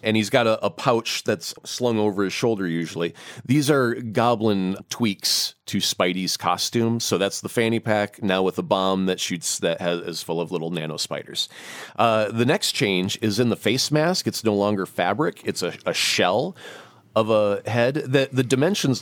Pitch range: 100-130 Hz